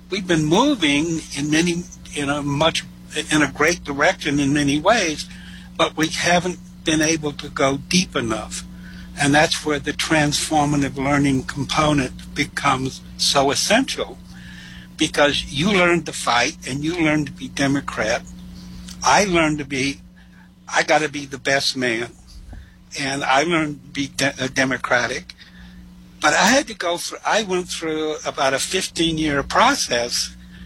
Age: 60-79